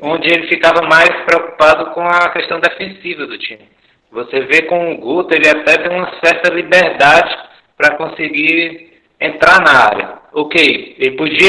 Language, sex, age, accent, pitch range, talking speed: Portuguese, male, 60-79, Brazilian, 155-180 Hz, 155 wpm